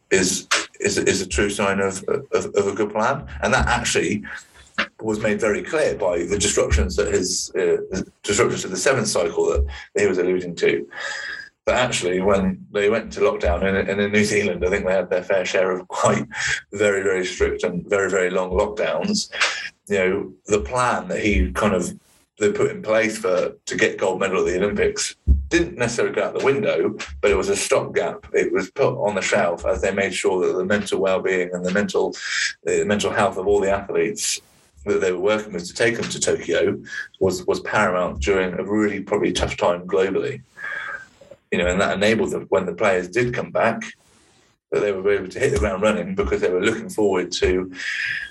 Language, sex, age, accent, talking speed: English, male, 30-49, British, 205 wpm